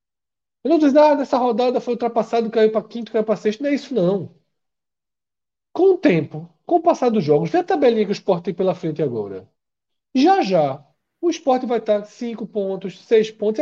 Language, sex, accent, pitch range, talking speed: Portuguese, male, Brazilian, 165-250 Hz, 205 wpm